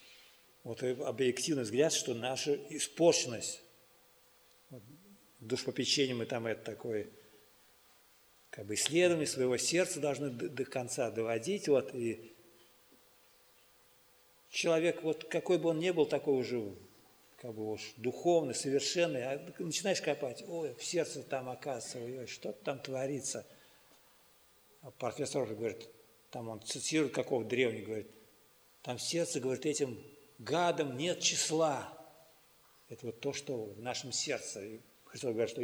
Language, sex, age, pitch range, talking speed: Russian, male, 50-69, 115-155 Hz, 130 wpm